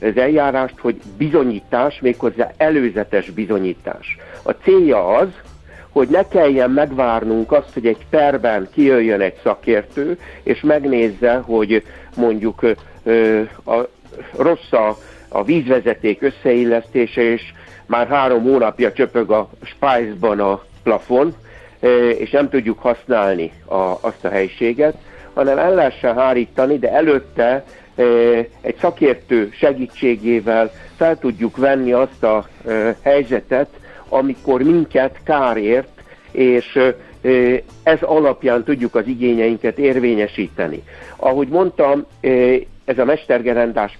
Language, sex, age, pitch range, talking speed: Hungarian, male, 60-79, 115-140 Hz, 100 wpm